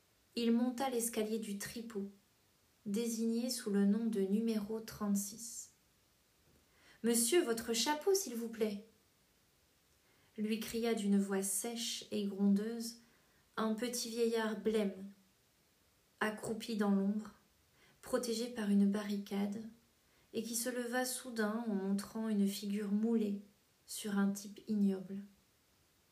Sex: female